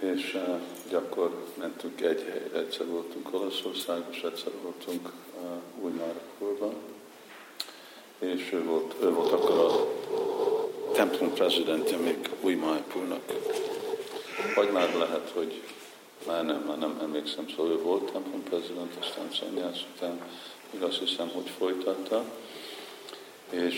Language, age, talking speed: Hungarian, 50-69, 120 wpm